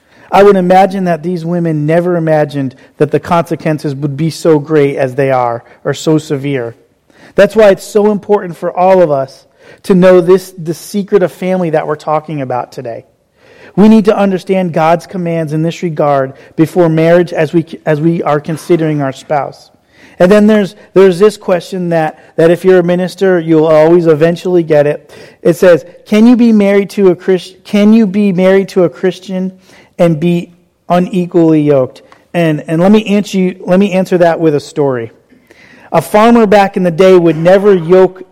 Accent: American